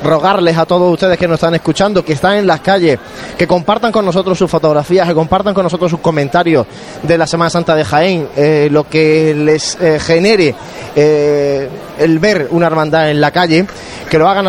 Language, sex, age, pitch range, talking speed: Spanish, male, 20-39, 150-180 Hz, 200 wpm